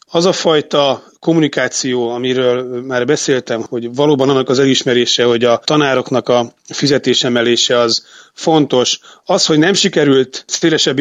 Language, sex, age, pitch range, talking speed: Hungarian, male, 30-49, 125-155 Hz, 130 wpm